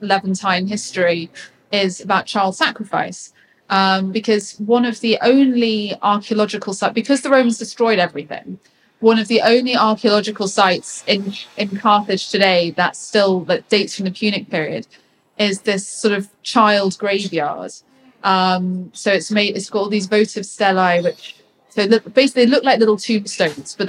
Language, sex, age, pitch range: English, female, 20-39, 185-215 Hz